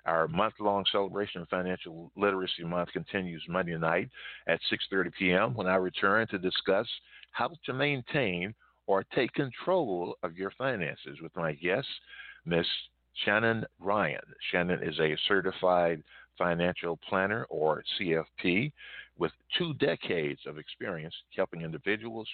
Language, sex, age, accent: English, male, 50-69, American